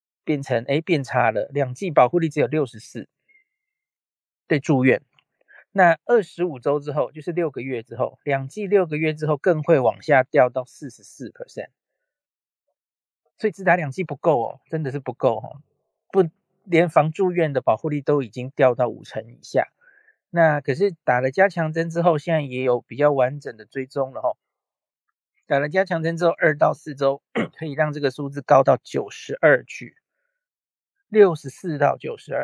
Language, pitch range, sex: Chinese, 135-185 Hz, male